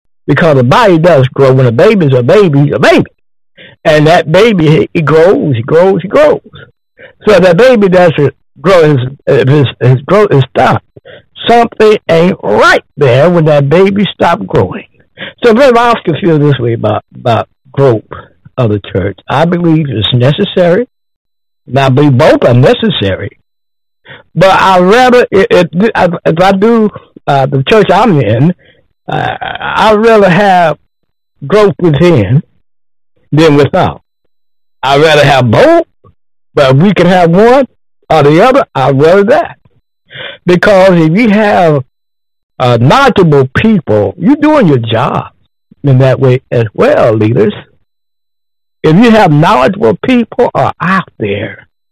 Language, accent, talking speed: English, American, 145 wpm